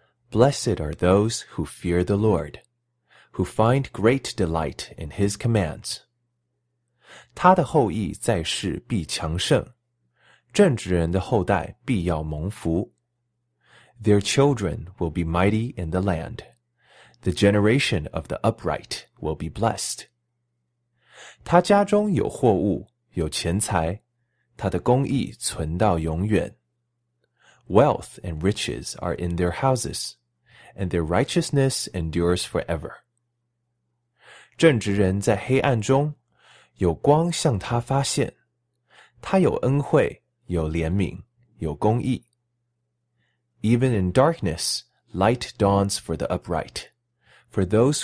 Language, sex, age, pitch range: Chinese, male, 30-49, 85-120 Hz